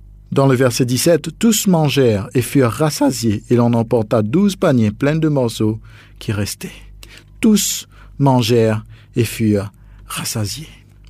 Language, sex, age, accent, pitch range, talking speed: French, male, 50-69, French, 105-145 Hz, 140 wpm